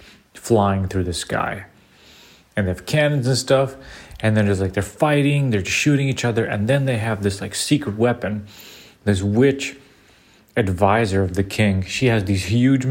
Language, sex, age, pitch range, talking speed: English, male, 30-49, 95-115 Hz, 175 wpm